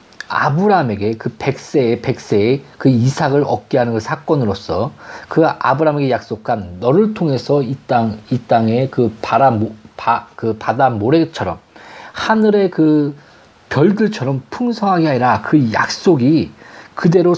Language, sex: Korean, male